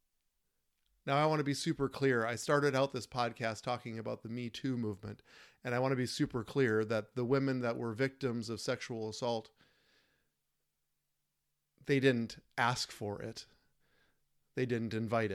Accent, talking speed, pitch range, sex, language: American, 165 wpm, 115-150 Hz, male, English